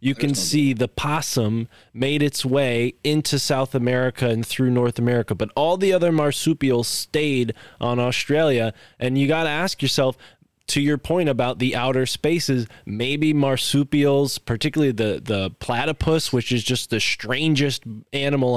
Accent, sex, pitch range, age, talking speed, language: American, male, 115-140 Hz, 20-39, 155 wpm, English